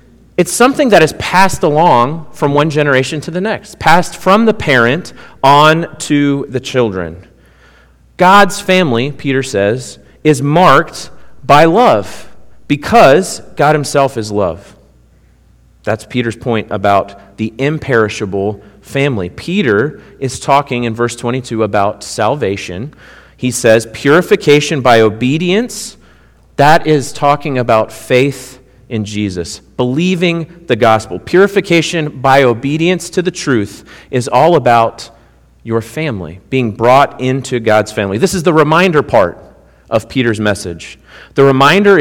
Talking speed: 125 wpm